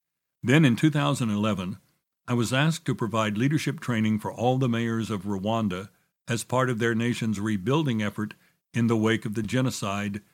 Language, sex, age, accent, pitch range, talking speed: English, male, 60-79, American, 105-135 Hz, 170 wpm